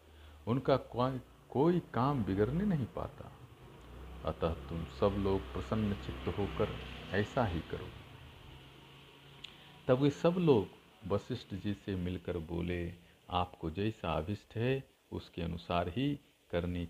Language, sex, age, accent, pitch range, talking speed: Hindi, male, 50-69, native, 80-100 Hz, 120 wpm